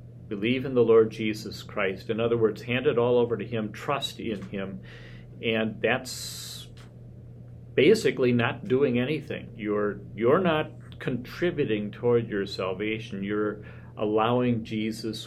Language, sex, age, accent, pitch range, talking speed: English, male, 50-69, American, 105-125 Hz, 135 wpm